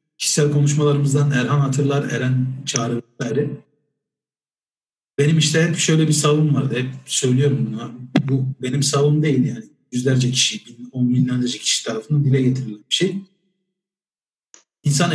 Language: Turkish